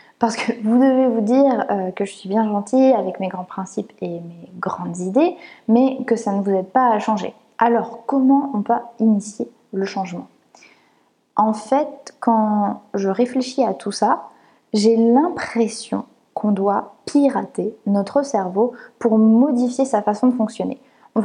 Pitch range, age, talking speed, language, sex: 205-260 Hz, 20-39, 160 wpm, French, female